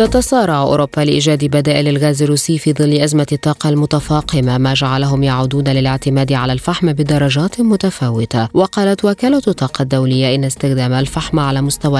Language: Arabic